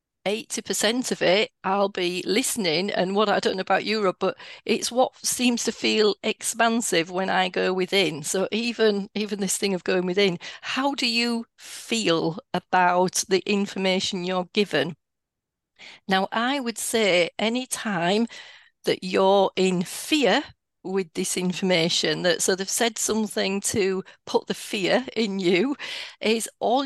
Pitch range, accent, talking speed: 185-230 Hz, British, 150 wpm